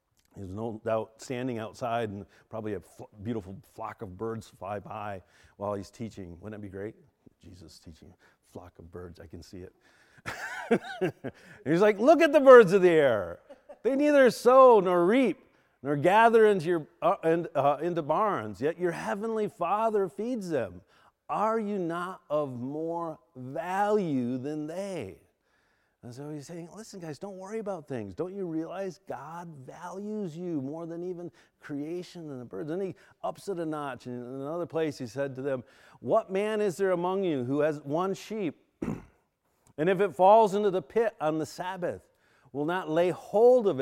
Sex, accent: male, American